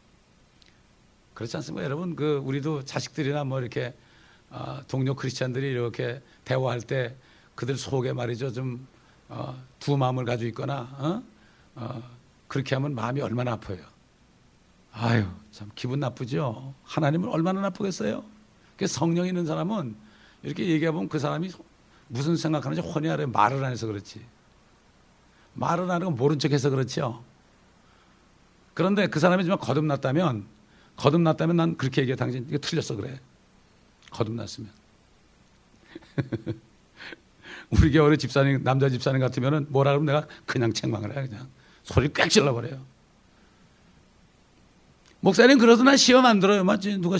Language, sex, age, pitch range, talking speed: English, male, 60-79, 120-165 Hz, 120 wpm